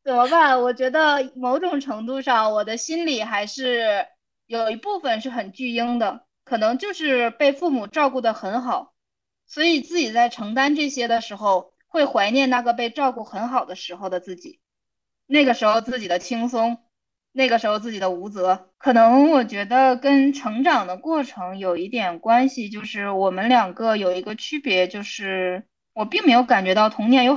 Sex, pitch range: female, 215-280 Hz